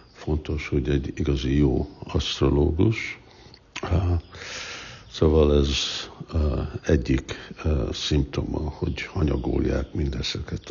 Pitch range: 75-95 Hz